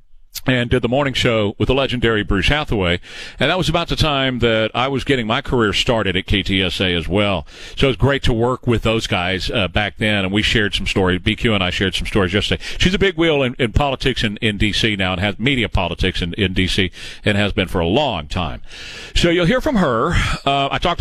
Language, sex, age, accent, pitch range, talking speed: English, male, 40-59, American, 105-135 Hz, 240 wpm